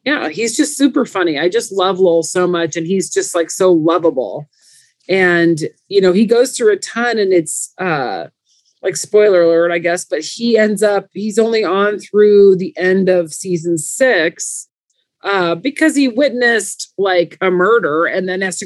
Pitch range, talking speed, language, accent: 170-225 Hz, 185 wpm, English, American